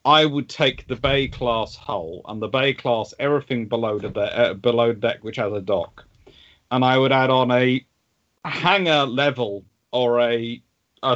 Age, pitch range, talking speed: 40-59, 120-150 Hz, 165 wpm